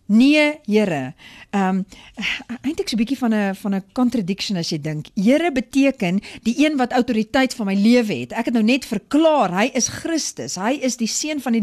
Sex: female